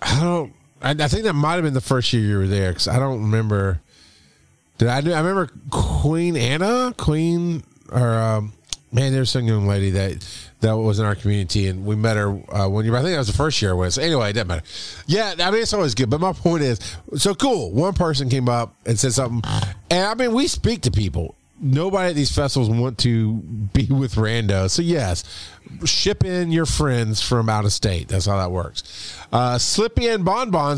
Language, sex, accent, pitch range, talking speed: English, male, American, 110-165 Hz, 220 wpm